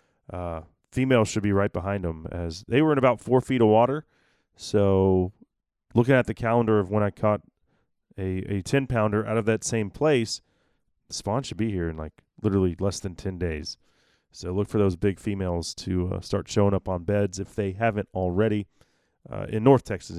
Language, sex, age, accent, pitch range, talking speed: English, male, 30-49, American, 95-125 Hz, 200 wpm